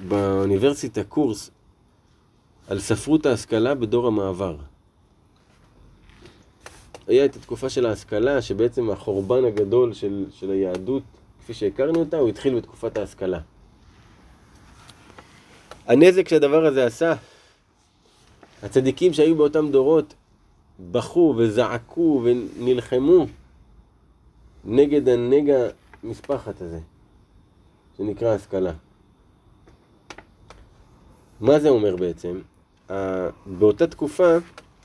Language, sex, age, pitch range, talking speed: Hebrew, male, 30-49, 100-155 Hz, 75 wpm